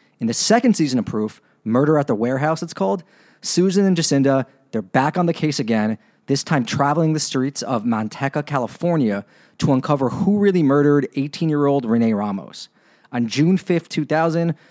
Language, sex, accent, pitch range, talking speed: English, male, American, 130-165 Hz, 165 wpm